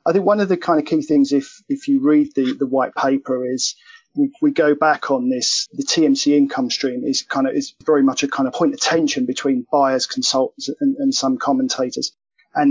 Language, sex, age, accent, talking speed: English, male, 40-59, British, 225 wpm